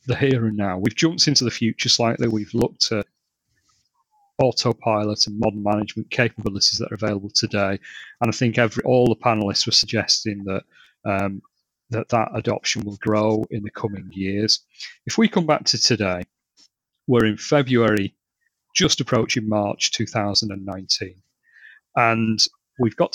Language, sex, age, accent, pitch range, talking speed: English, male, 30-49, British, 100-120 Hz, 150 wpm